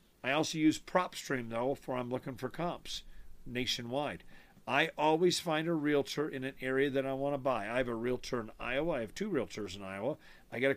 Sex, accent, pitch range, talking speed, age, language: male, American, 125-165 Hz, 215 wpm, 50-69, English